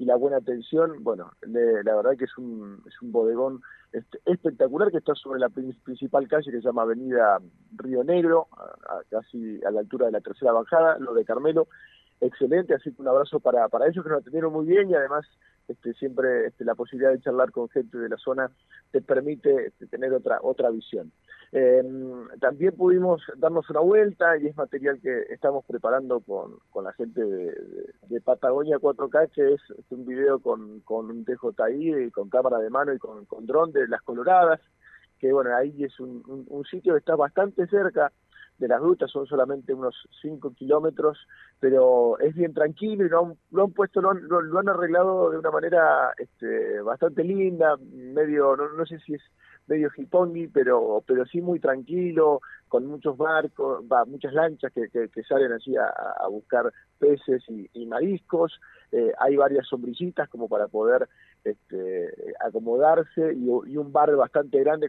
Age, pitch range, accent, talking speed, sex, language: 40-59, 130-205 Hz, Argentinian, 190 wpm, male, Spanish